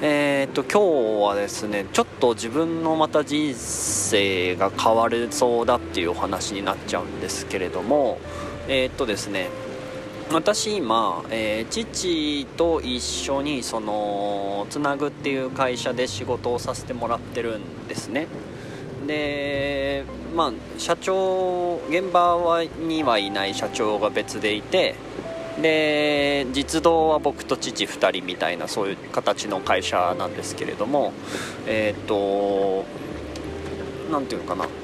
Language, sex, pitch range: Japanese, male, 105-165 Hz